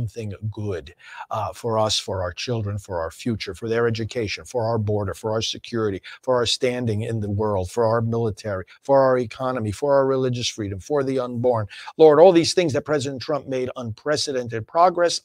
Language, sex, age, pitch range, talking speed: English, male, 50-69, 115-150 Hz, 195 wpm